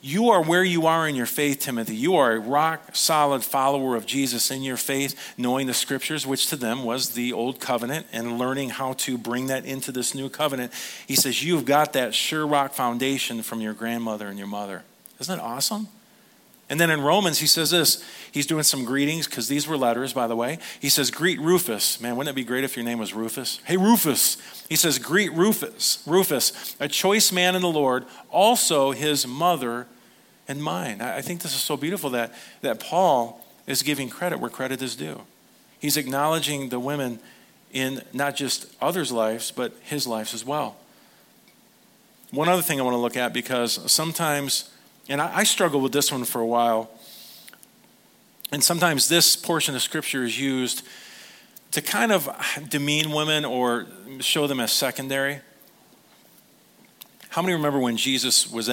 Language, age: English, 40-59